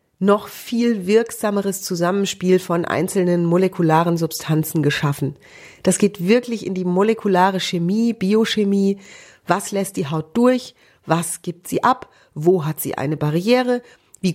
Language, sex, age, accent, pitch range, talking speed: German, female, 40-59, German, 170-210 Hz, 135 wpm